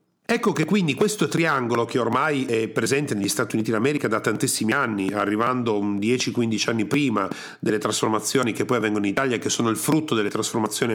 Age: 40-59